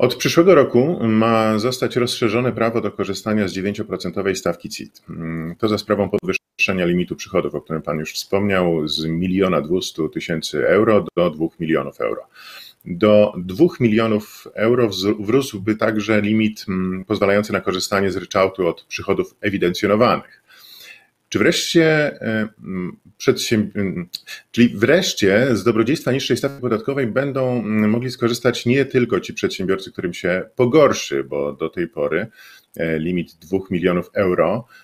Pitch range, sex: 95-115 Hz, male